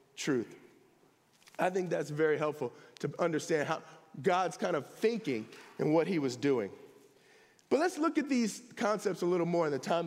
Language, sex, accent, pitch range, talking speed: English, male, American, 205-315 Hz, 180 wpm